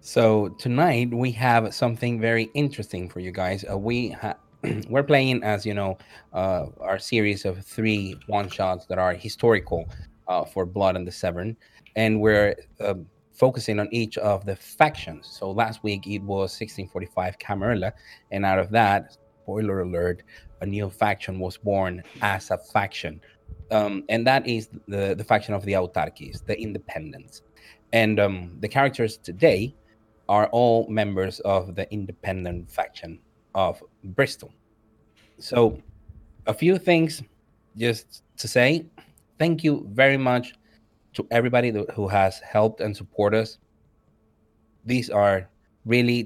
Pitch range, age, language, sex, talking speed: 95-115 Hz, 30-49, English, male, 145 wpm